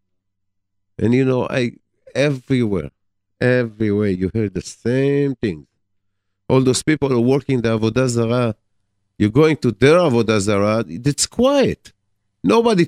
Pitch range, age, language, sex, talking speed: 100-115 Hz, 50-69, English, male, 135 wpm